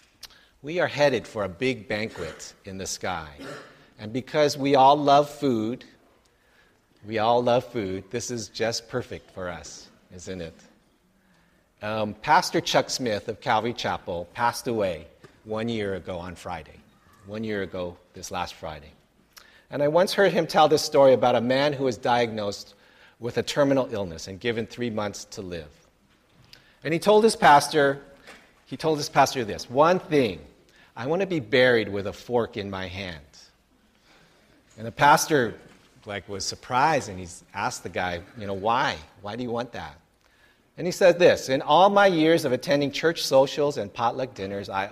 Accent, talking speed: American, 170 wpm